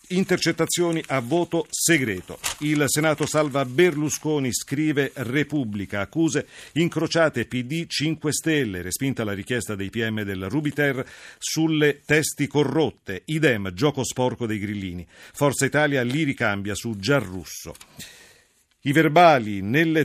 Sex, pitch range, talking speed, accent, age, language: male, 110-150 Hz, 115 wpm, native, 50-69, Italian